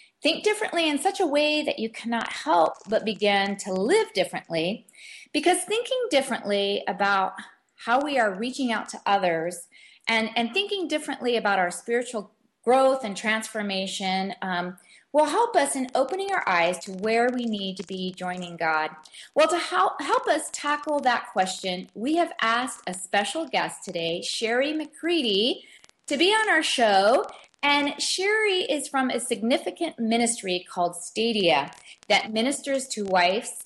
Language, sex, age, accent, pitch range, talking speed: English, female, 30-49, American, 200-285 Hz, 155 wpm